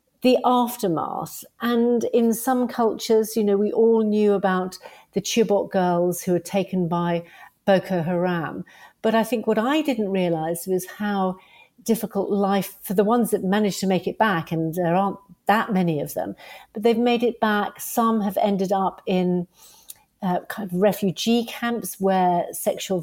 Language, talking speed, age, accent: English, 170 wpm, 50-69, British